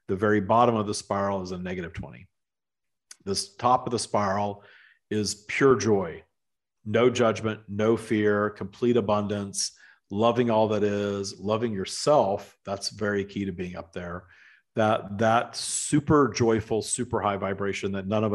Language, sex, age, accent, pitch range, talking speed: English, male, 40-59, American, 95-110 Hz, 155 wpm